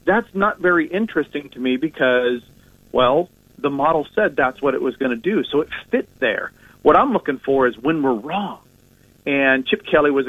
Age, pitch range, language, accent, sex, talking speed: 50-69, 120-145 Hz, English, American, male, 200 wpm